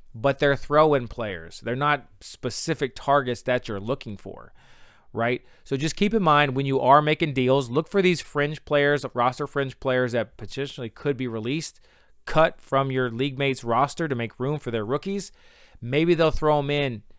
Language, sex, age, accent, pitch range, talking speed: English, male, 30-49, American, 115-145 Hz, 185 wpm